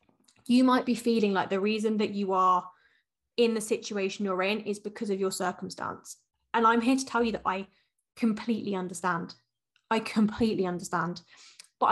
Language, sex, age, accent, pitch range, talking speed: English, female, 20-39, British, 190-240 Hz, 170 wpm